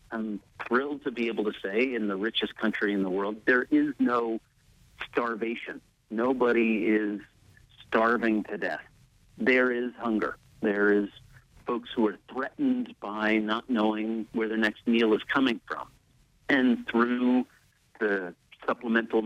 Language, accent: English, American